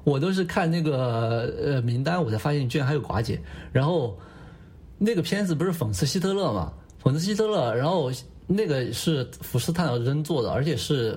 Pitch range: 120-165 Hz